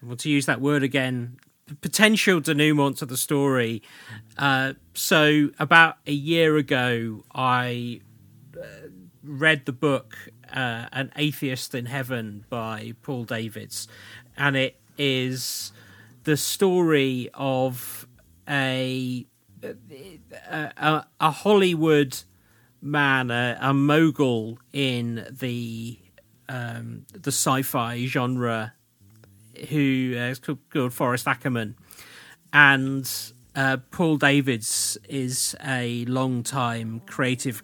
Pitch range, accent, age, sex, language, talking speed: 120-145 Hz, British, 40-59, male, English, 100 wpm